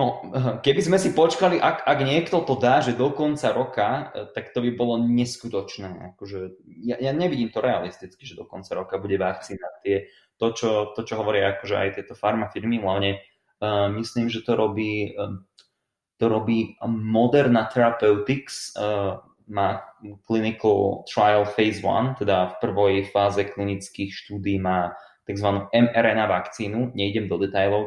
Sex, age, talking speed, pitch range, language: male, 20-39, 155 wpm, 100-125 Hz, Slovak